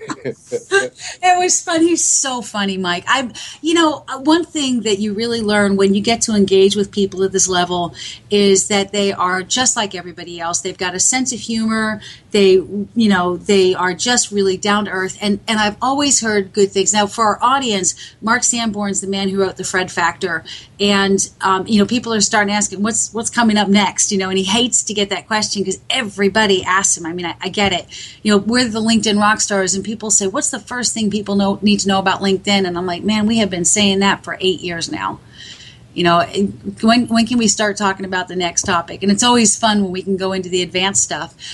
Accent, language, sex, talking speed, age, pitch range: American, English, female, 230 wpm, 40-59, 190-230 Hz